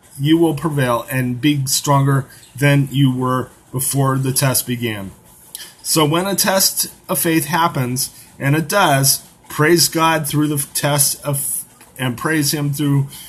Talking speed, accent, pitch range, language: 150 wpm, American, 125-150 Hz, English